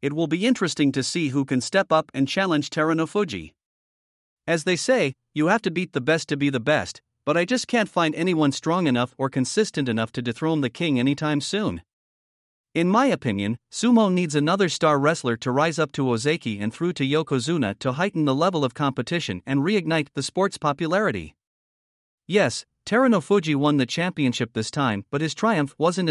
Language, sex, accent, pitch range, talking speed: English, male, American, 130-175 Hz, 190 wpm